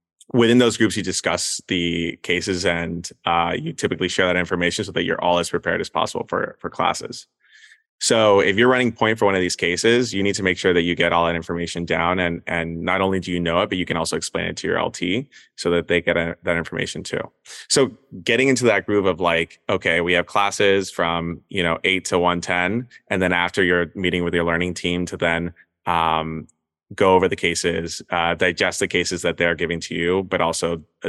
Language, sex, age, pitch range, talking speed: English, male, 20-39, 85-95 Hz, 225 wpm